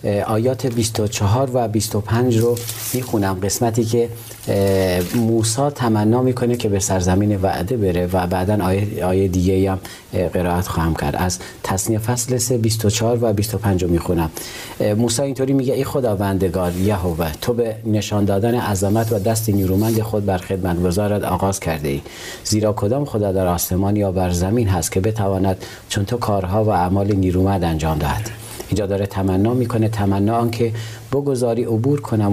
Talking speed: 150 wpm